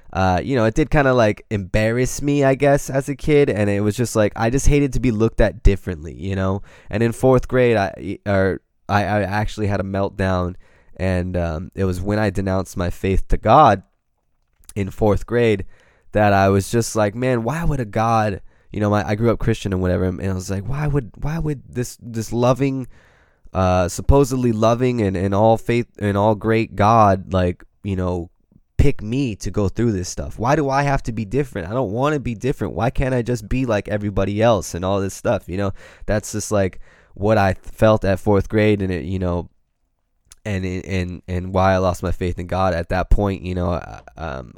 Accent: American